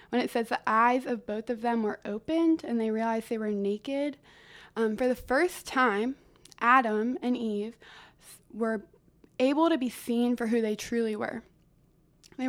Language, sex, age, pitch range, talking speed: English, female, 20-39, 220-255 Hz, 175 wpm